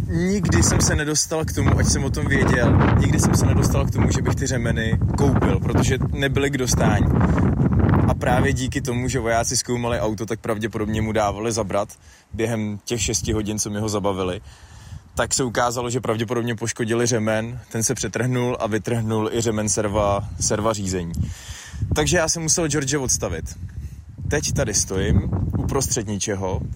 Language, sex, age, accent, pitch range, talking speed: Czech, male, 20-39, native, 100-120 Hz, 170 wpm